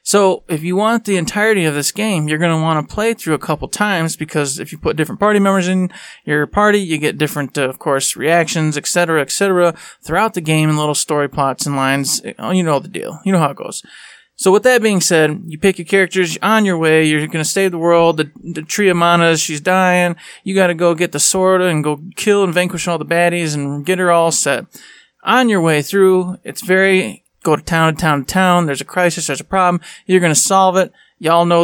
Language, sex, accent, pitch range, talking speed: English, male, American, 155-185 Hz, 240 wpm